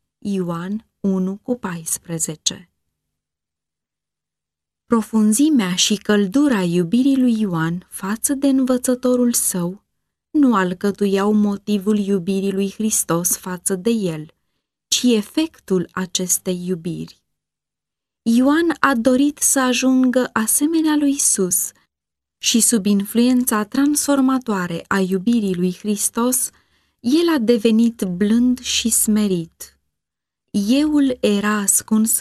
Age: 20-39